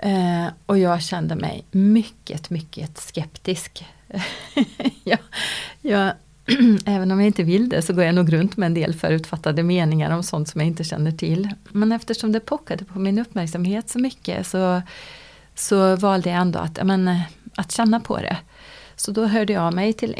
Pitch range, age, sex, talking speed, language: 175-210 Hz, 30-49, female, 175 wpm, Swedish